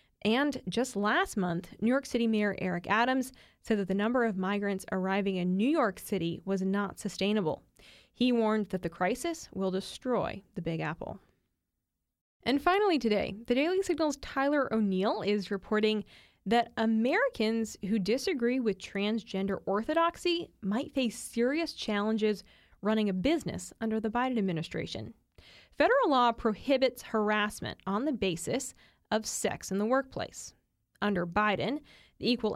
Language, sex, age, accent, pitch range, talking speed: English, female, 20-39, American, 200-255 Hz, 145 wpm